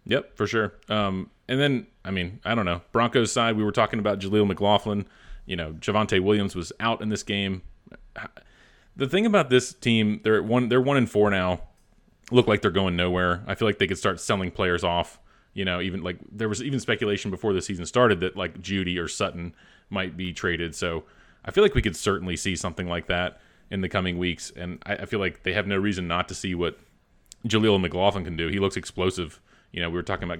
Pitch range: 90-105 Hz